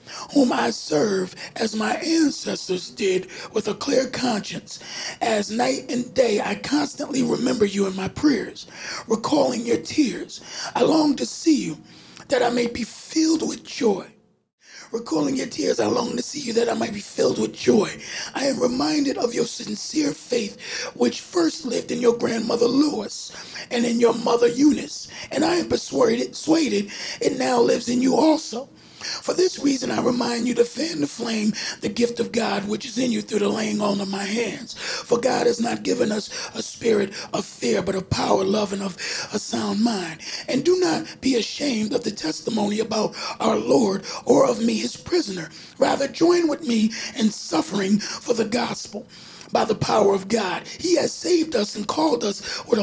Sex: male